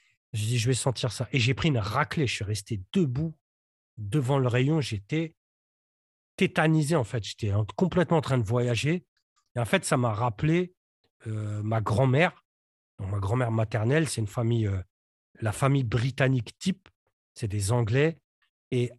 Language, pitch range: French, 115-160 Hz